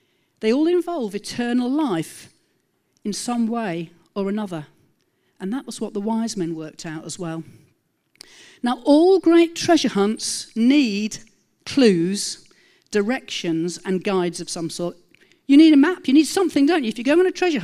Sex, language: female, English